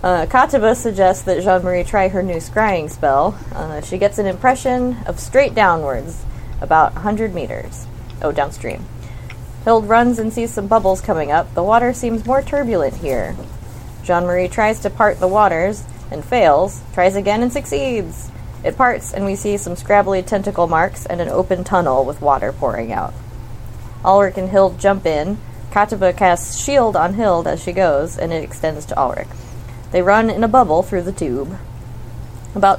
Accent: American